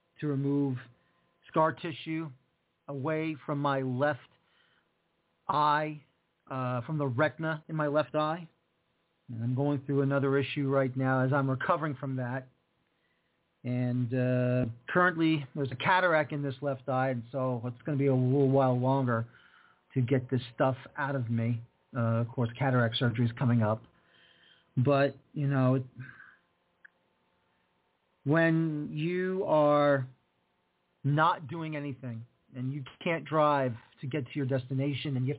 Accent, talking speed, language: American, 150 wpm, English